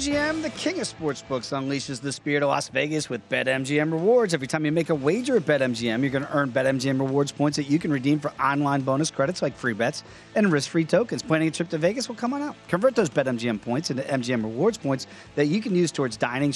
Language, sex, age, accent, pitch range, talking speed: English, male, 40-59, American, 130-175 Hz, 240 wpm